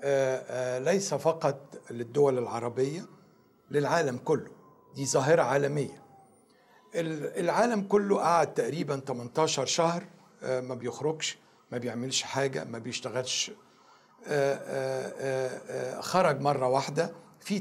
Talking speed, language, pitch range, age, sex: 90 wpm, Arabic, 145-195 Hz, 60-79, male